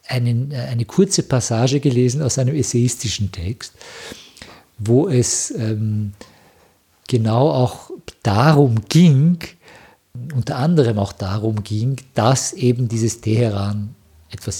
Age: 50-69